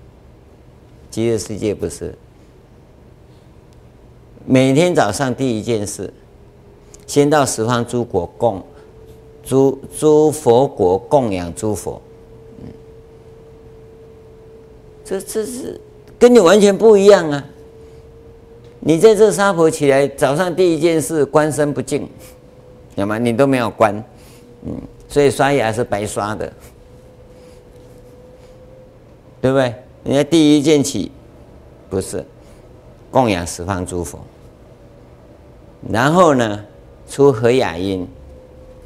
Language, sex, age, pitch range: Chinese, male, 50-69, 95-135 Hz